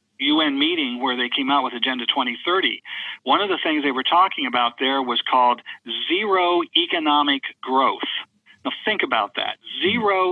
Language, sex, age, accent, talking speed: English, male, 50-69, American, 165 wpm